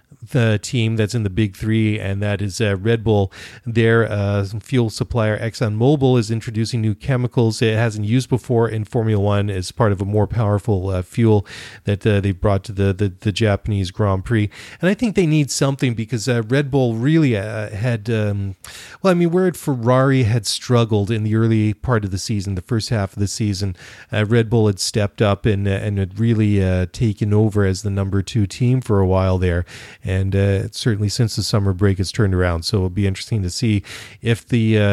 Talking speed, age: 215 wpm, 40-59